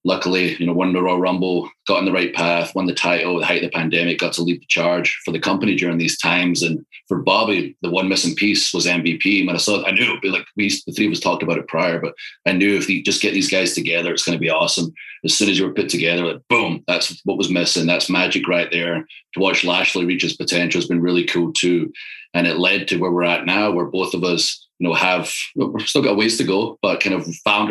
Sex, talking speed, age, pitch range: male, 275 wpm, 30-49, 85-100 Hz